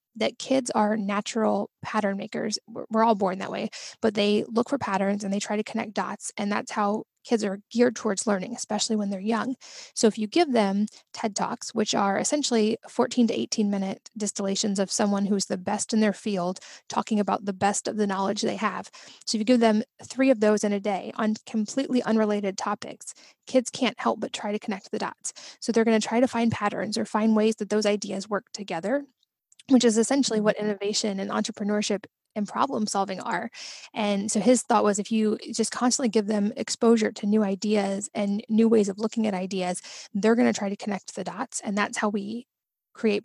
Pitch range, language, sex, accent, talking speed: 200-230 Hz, English, female, American, 210 wpm